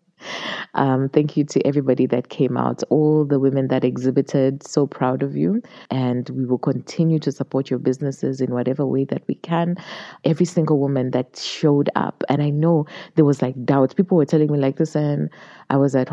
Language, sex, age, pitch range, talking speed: English, female, 20-39, 130-150 Hz, 195 wpm